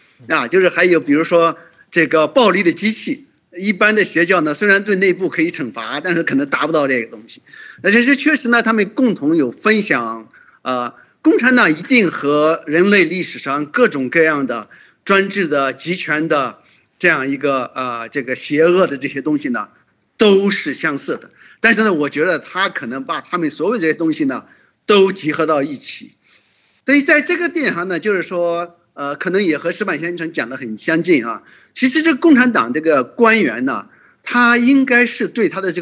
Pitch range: 150-240 Hz